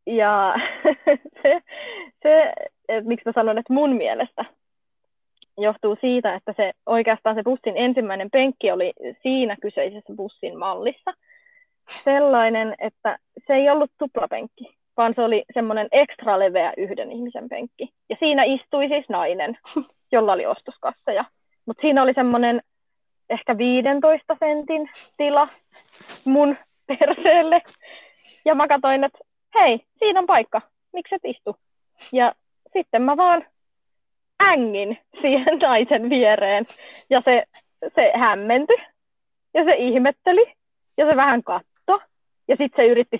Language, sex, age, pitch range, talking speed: Finnish, female, 20-39, 230-315 Hz, 120 wpm